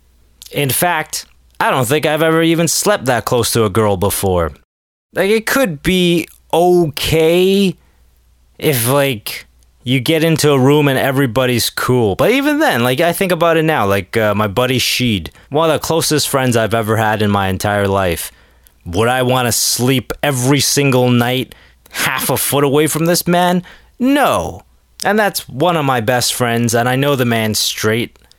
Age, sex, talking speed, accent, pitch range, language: 20-39, male, 180 wpm, American, 100-150 Hz, English